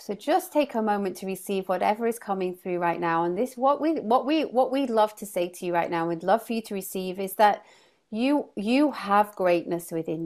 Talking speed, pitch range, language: 240 wpm, 185-250 Hz, English